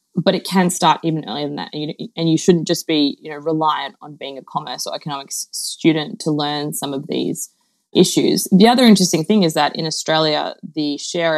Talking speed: 215 wpm